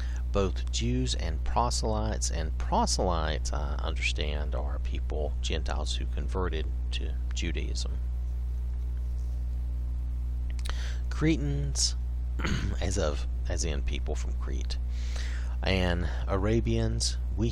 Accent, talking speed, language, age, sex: American, 90 wpm, English, 40-59, male